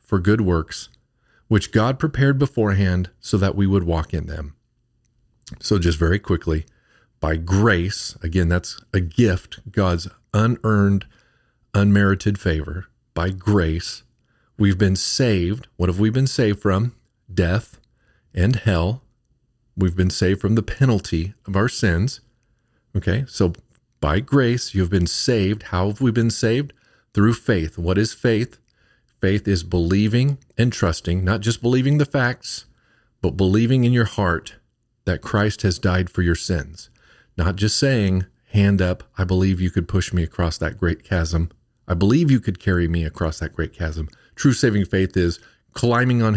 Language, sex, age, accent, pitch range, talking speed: English, male, 40-59, American, 90-115 Hz, 155 wpm